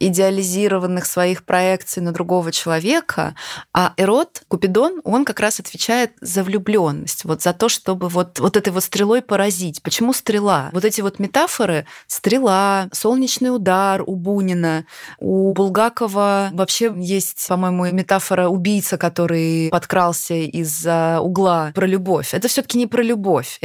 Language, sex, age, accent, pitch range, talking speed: Russian, female, 20-39, native, 180-225 Hz, 135 wpm